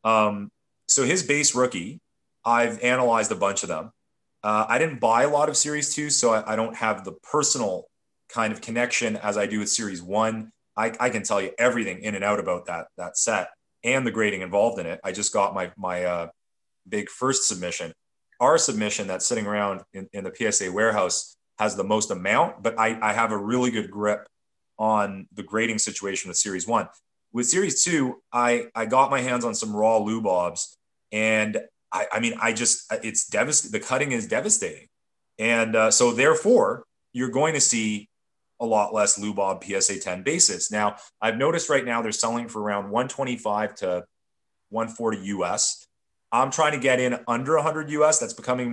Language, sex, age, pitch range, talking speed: English, male, 30-49, 105-125 Hz, 190 wpm